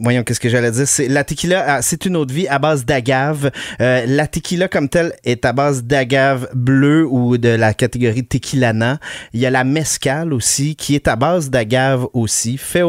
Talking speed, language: 200 wpm, French